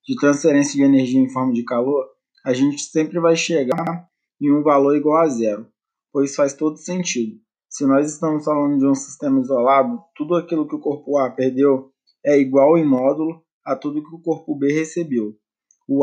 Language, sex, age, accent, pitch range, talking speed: Portuguese, male, 20-39, Brazilian, 135-160 Hz, 185 wpm